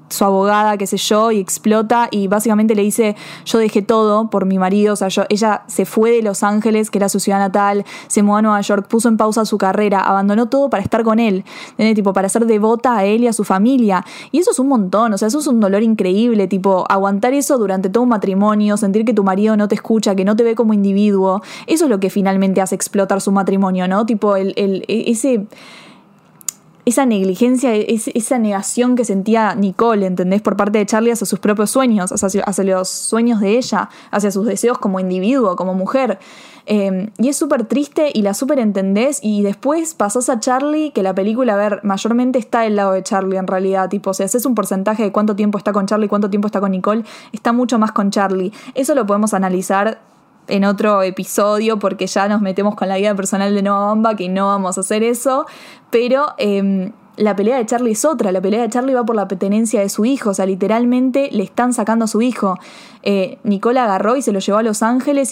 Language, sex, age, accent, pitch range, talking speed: Spanish, female, 20-39, Argentinian, 195-235 Hz, 225 wpm